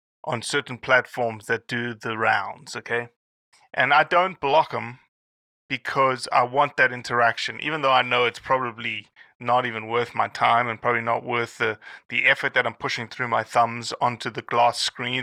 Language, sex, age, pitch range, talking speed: English, male, 30-49, 115-140 Hz, 180 wpm